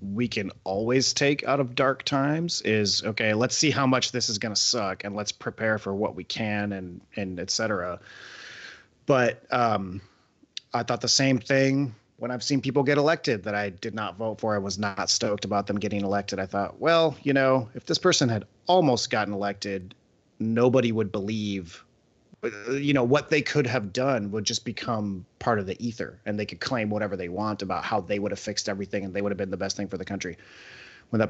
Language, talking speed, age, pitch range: English, 215 wpm, 30-49, 100-125 Hz